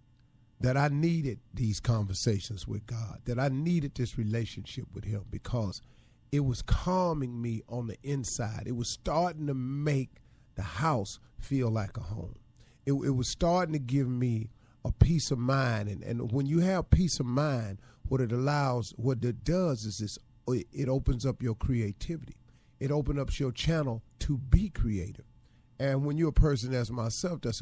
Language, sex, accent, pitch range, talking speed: English, male, American, 120-150 Hz, 175 wpm